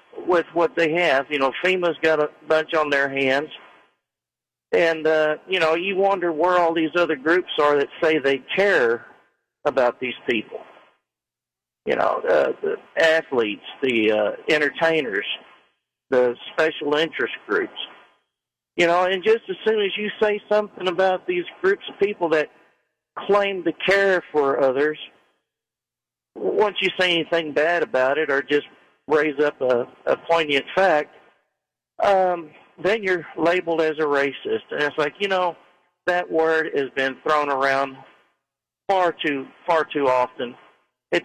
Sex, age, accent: male, 50-69, American